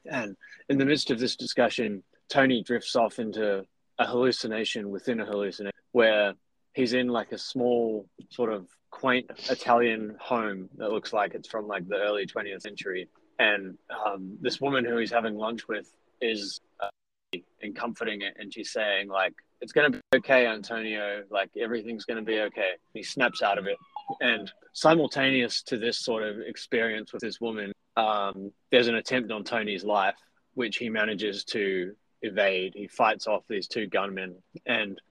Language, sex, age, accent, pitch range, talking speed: English, male, 20-39, Australian, 100-125 Hz, 170 wpm